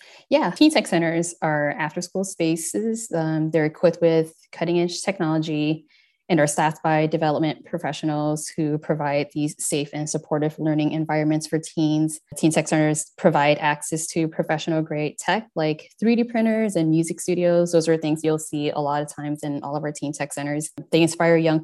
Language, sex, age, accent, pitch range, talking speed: English, female, 20-39, American, 150-170 Hz, 170 wpm